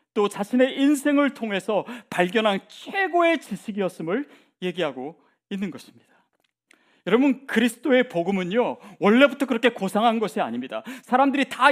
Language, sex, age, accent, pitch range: Korean, male, 40-59, native, 170-255 Hz